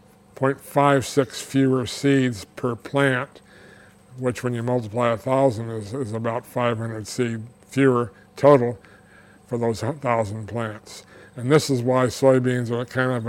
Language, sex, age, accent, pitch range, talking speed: English, male, 60-79, American, 115-135 Hz, 130 wpm